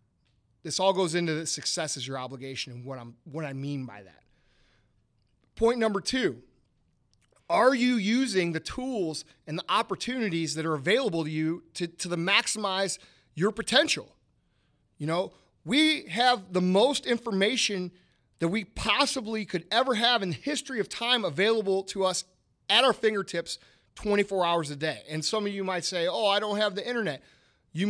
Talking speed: 170 wpm